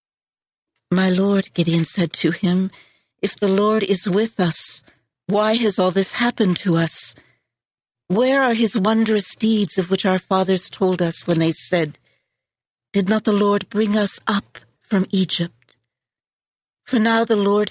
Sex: female